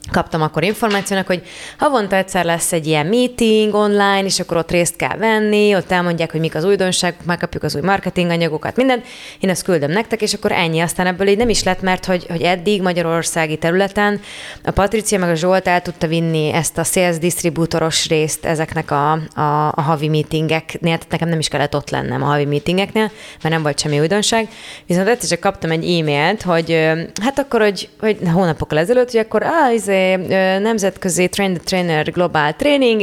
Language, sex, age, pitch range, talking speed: Hungarian, female, 20-39, 160-215 Hz, 185 wpm